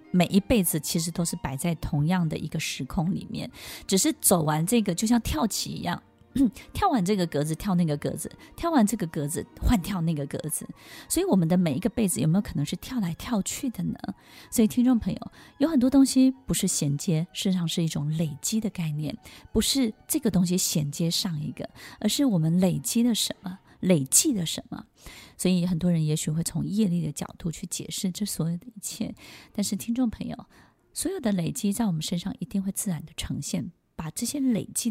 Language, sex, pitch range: Chinese, female, 160-205 Hz